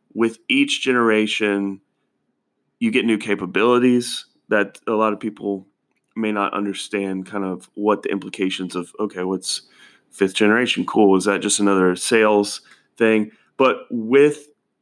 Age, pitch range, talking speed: 30-49, 100-120 Hz, 140 wpm